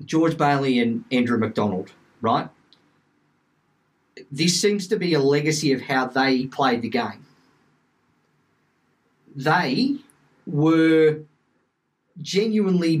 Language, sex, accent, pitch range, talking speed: English, male, Australian, 125-155 Hz, 95 wpm